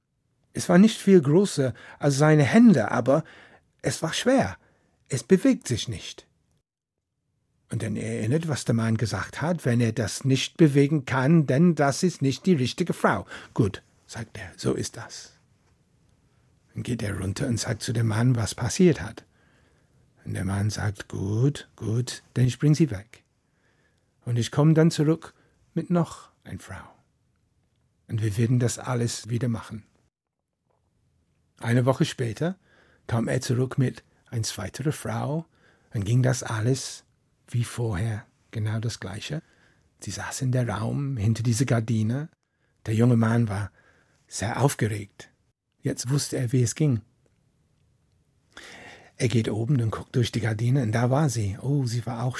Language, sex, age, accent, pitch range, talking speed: German, male, 60-79, German, 115-140 Hz, 155 wpm